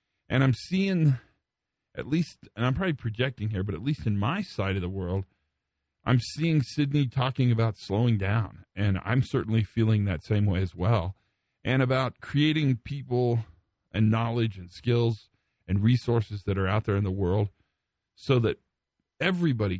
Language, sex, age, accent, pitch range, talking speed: English, male, 40-59, American, 100-135 Hz, 165 wpm